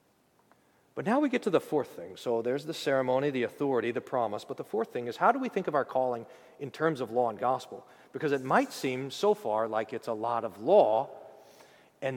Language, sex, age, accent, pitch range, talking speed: English, male, 40-59, American, 140-195 Hz, 230 wpm